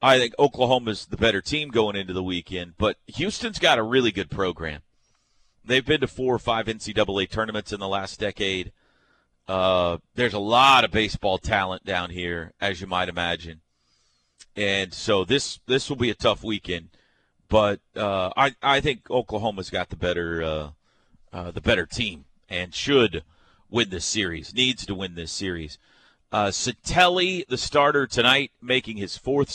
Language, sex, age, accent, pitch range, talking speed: English, male, 40-59, American, 95-125 Hz, 170 wpm